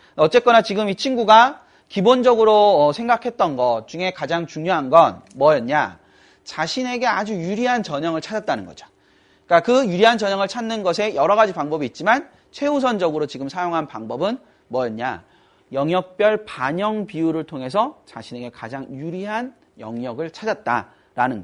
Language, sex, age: Korean, male, 30-49